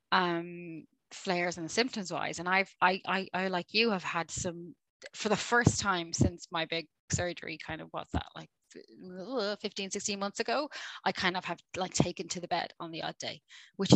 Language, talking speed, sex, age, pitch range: English, 200 wpm, female, 20-39, 175-210 Hz